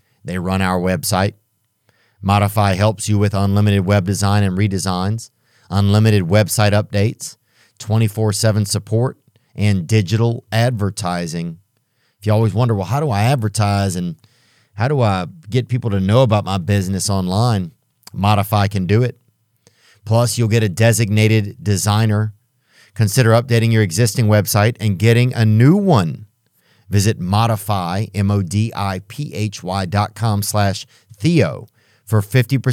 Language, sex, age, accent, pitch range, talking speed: English, male, 40-59, American, 100-120 Hz, 130 wpm